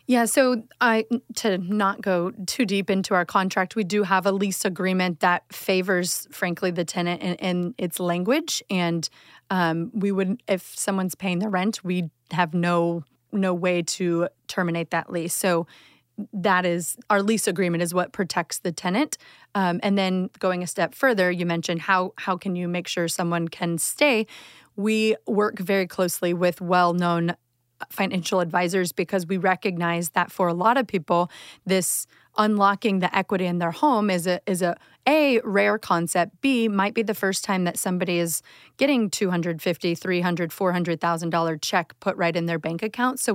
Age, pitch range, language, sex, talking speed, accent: 30-49, 170-195 Hz, English, female, 175 wpm, American